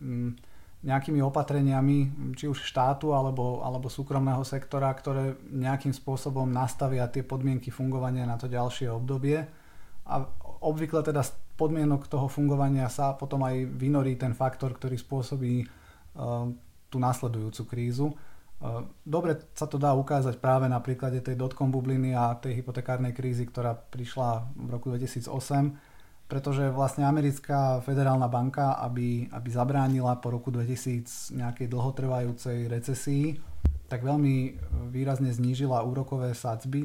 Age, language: 30-49, Slovak